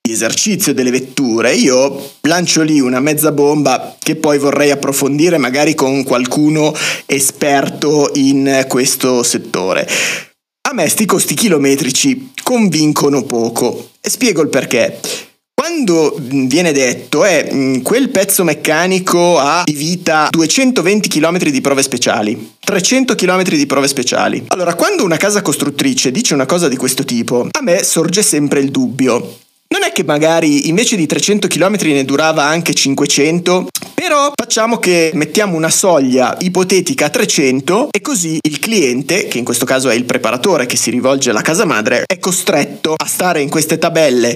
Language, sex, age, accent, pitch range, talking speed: Italian, male, 30-49, native, 140-190 Hz, 155 wpm